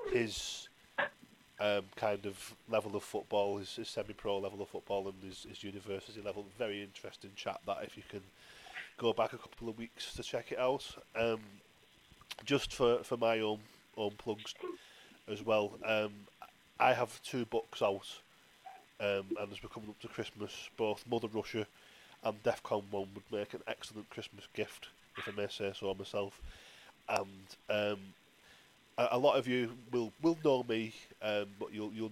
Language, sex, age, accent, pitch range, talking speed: English, male, 20-39, British, 100-115 Hz, 170 wpm